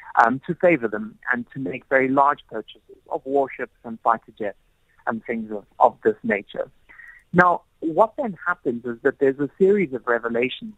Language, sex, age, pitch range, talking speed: English, male, 30-49, 115-160 Hz, 180 wpm